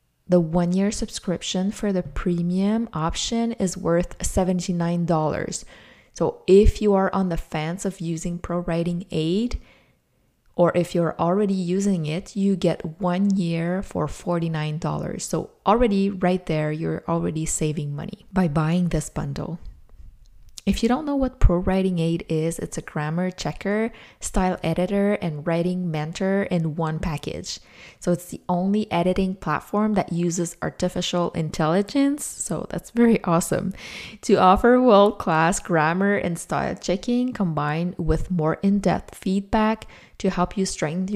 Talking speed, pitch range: 140 wpm, 165-195 Hz